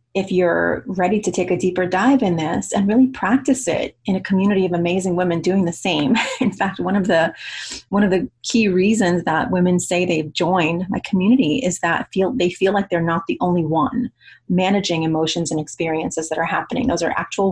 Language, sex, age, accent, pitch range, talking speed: English, female, 30-49, American, 170-200 Hz, 210 wpm